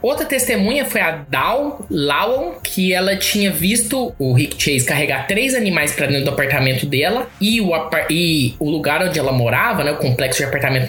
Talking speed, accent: 195 wpm, Brazilian